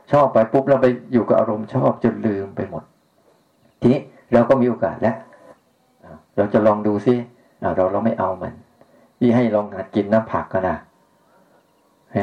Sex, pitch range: male, 110-130 Hz